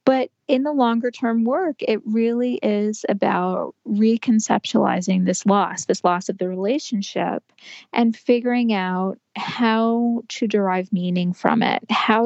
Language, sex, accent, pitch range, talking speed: English, female, American, 200-240 Hz, 130 wpm